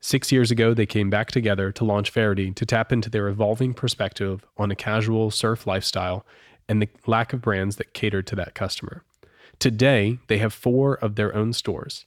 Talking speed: 195 wpm